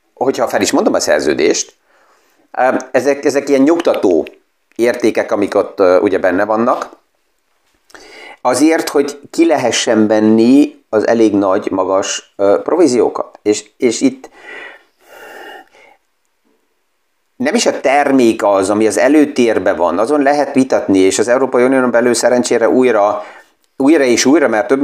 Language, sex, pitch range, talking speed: Hungarian, male, 105-135 Hz, 130 wpm